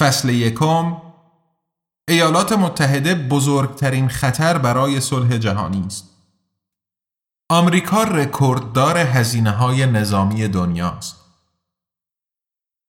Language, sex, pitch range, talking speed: Persian, male, 110-145 Hz, 75 wpm